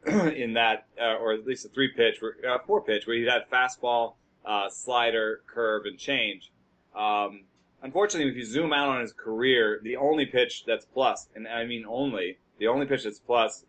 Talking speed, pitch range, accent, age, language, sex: 195 wpm, 110-140 Hz, American, 30-49, English, male